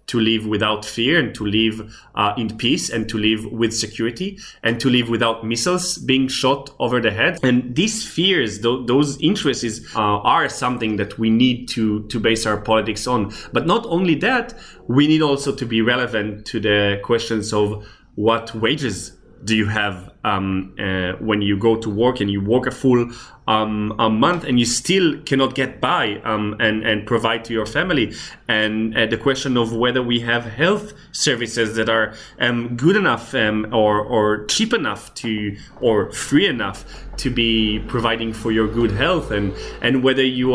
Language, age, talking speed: English, 20-39, 185 wpm